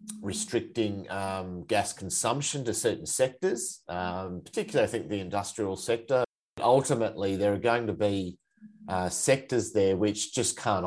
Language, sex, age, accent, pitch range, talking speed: English, male, 30-49, Australian, 90-115 Hz, 145 wpm